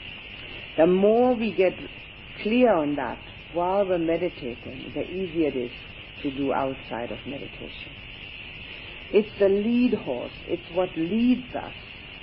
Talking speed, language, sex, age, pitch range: 130 wpm, English, female, 60-79, 145-205 Hz